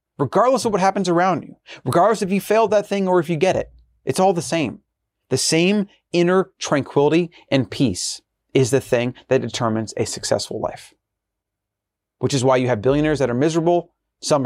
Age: 30-49